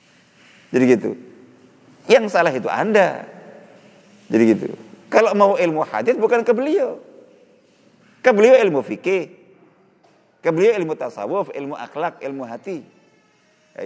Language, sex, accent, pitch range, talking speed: Indonesian, male, native, 135-205 Hz, 120 wpm